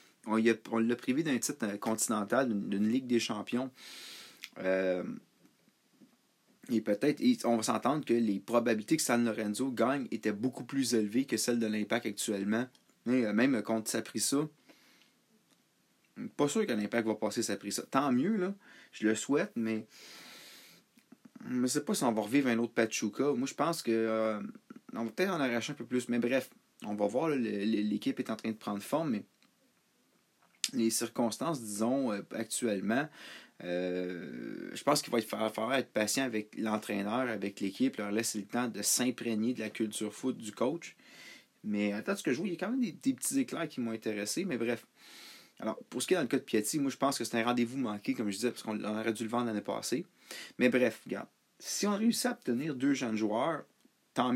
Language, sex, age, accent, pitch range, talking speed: French, male, 30-49, Canadian, 110-135 Hz, 210 wpm